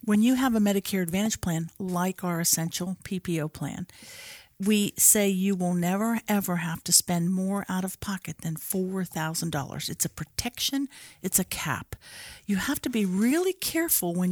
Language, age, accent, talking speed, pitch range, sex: English, 50-69, American, 160 wpm, 180-230 Hz, female